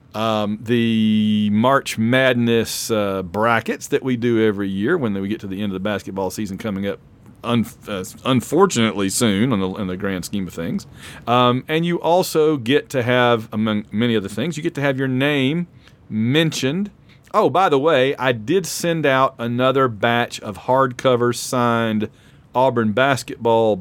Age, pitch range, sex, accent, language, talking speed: 40-59, 110-135 Hz, male, American, English, 165 wpm